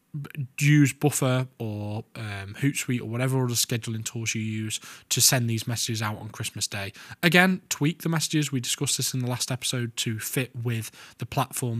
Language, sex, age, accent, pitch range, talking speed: English, male, 10-29, British, 110-130 Hz, 185 wpm